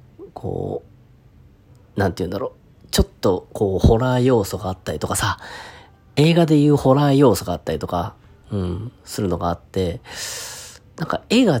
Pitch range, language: 95-135 Hz, Japanese